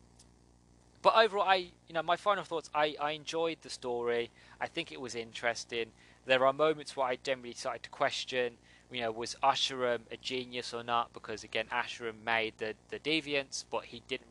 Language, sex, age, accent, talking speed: English, male, 20-39, British, 190 wpm